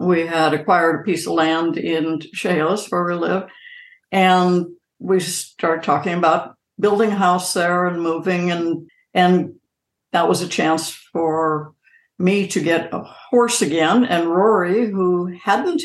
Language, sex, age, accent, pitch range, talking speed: English, female, 60-79, American, 160-190 Hz, 150 wpm